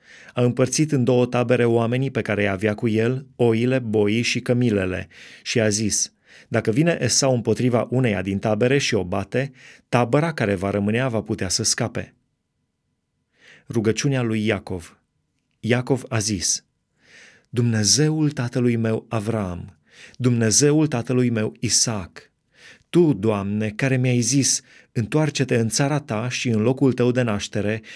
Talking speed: 140 wpm